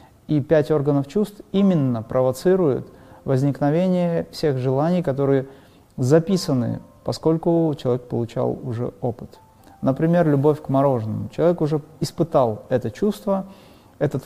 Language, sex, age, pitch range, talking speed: Russian, male, 30-49, 120-155 Hz, 110 wpm